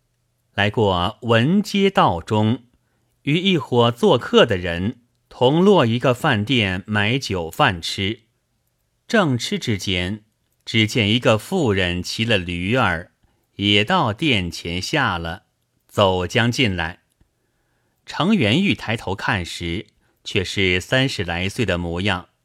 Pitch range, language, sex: 95-130 Hz, Chinese, male